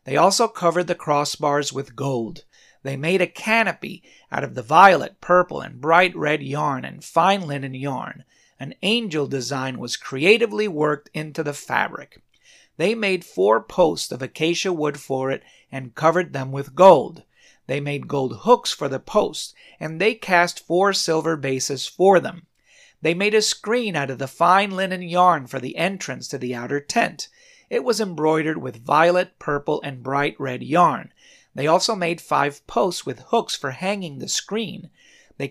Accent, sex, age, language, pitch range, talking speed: American, male, 50-69, English, 140-190 Hz, 170 wpm